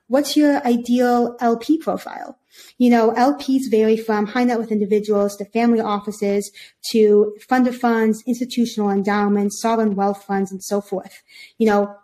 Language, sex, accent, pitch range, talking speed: English, female, American, 210-240 Hz, 150 wpm